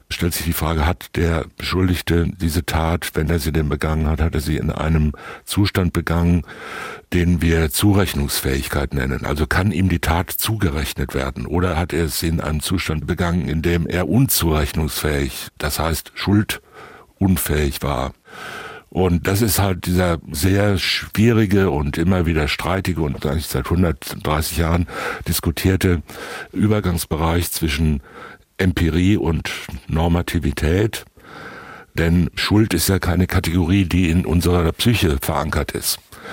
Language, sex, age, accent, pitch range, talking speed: German, male, 60-79, German, 80-90 Hz, 135 wpm